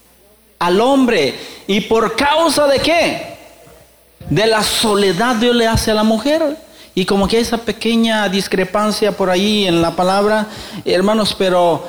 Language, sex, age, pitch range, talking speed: Spanish, male, 40-59, 130-205 Hz, 150 wpm